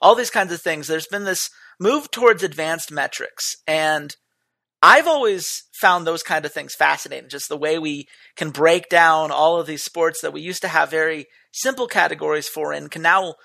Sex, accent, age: male, American, 40-59